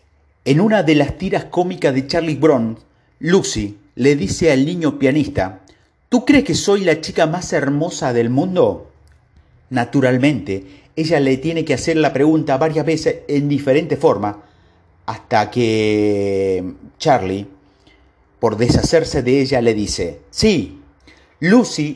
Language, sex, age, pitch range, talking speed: Spanish, male, 40-59, 110-165 Hz, 135 wpm